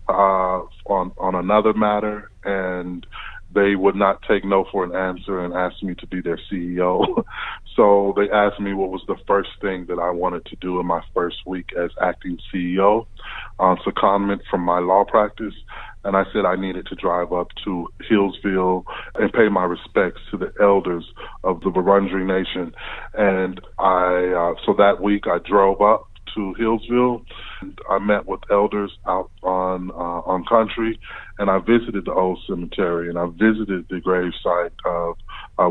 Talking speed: 175 wpm